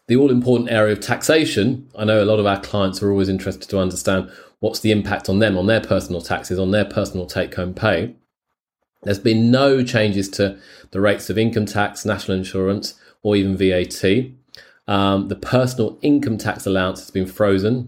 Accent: British